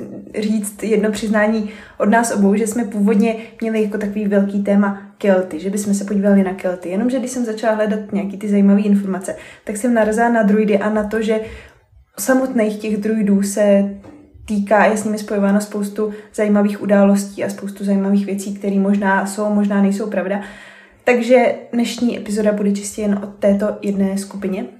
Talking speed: 170 wpm